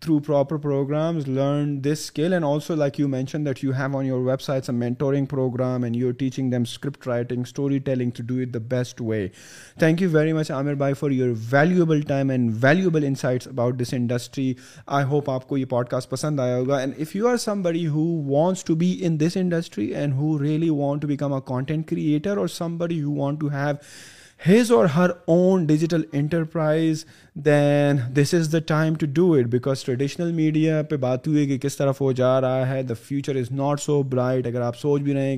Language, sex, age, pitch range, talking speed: Urdu, male, 30-49, 130-155 Hz, 195 wpm